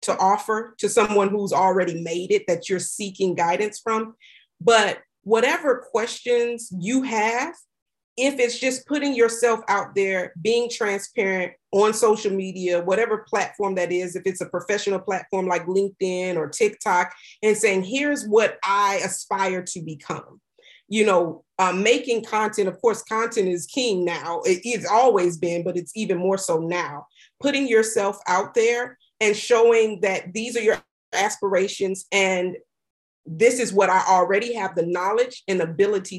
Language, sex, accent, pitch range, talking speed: English, female, American, 185-235 Hz, 155 wpm